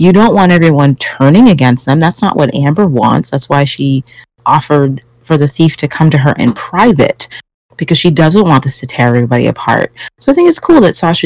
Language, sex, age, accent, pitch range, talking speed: English, female, 30-49, American, 130-165 Hz, 220 wpm